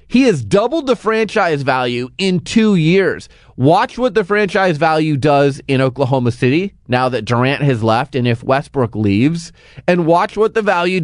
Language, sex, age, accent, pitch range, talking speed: English, male, 30-49, American, 130-175 Hz, 175 wpm